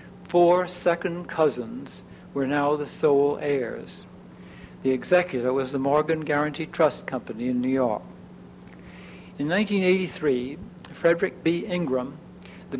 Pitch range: 140-170 Hz